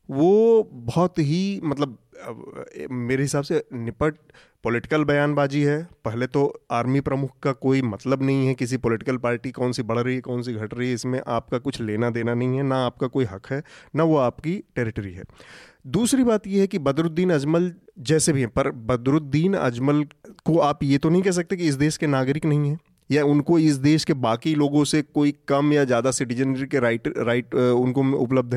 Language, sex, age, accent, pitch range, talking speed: Hindi, male, 30-49, native, 125-150 Hz, 200 wpm